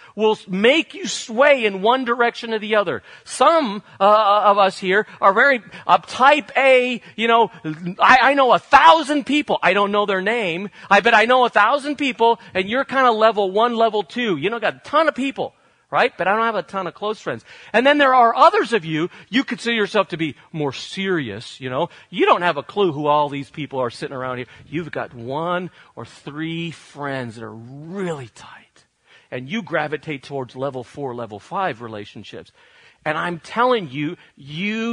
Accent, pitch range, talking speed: American, 145-230 Hz, 205 wpm